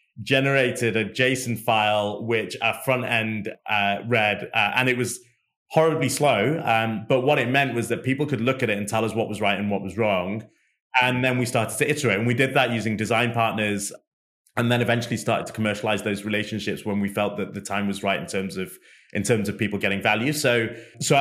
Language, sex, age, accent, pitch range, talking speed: English, male, 20-39, British, 105-125 Hz, 220 wpm